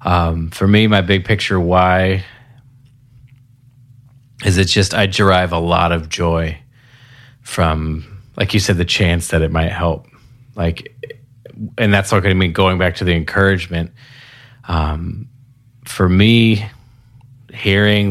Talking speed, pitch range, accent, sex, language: 140 wpm, 90-120 Hz, American, male, English